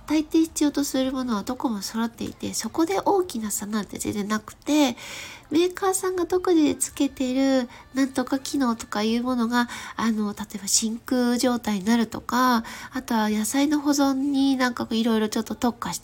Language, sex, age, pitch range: Japanese, female, 20-39, 220-300 Hz